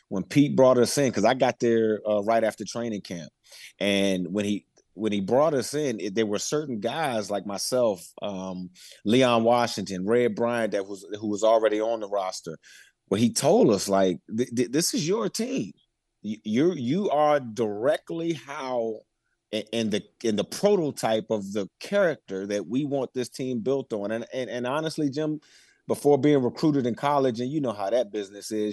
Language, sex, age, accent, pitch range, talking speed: English, male, 30-49, American, 110-150 Hz, 190 wpm